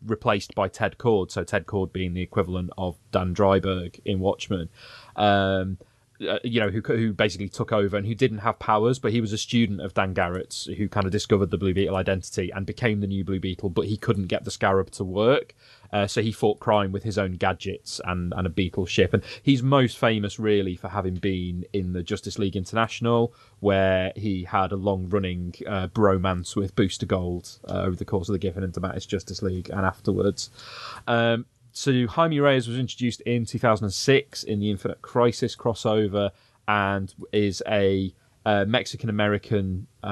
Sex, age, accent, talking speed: male, 20-39, British, 190 wpm